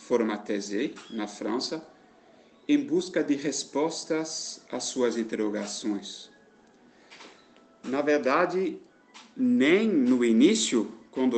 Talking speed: 90 wpm